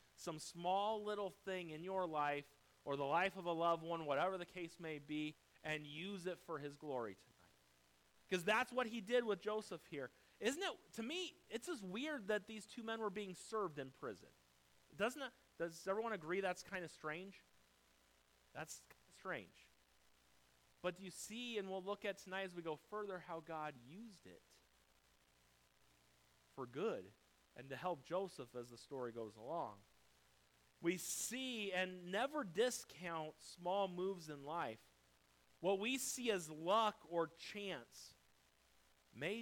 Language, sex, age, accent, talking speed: English, male, 30-49, American, 160 wpm